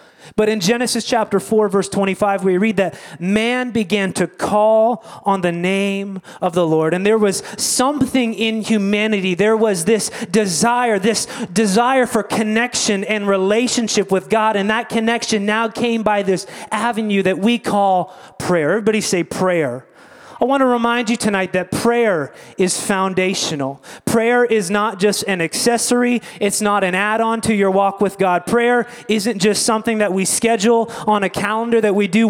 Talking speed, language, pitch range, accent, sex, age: 165 wpm, English, 195-235 Hz, American, male, 30-49